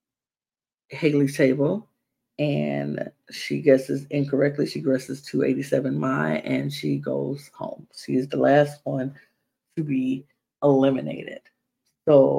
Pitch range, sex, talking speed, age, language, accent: 135-165 Hz, female, 110 wpm, 40-59, English, American